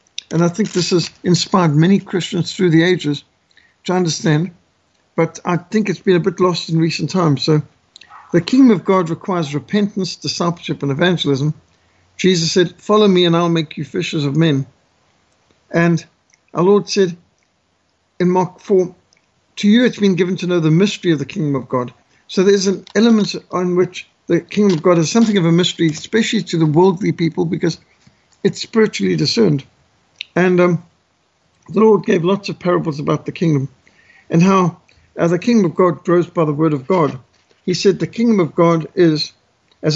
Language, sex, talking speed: English, male, 185 wpm